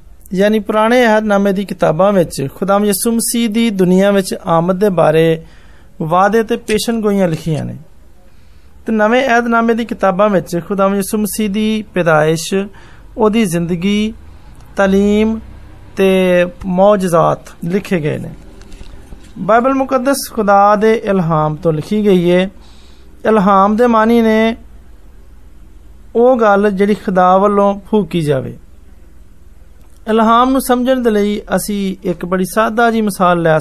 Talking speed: 75 wpm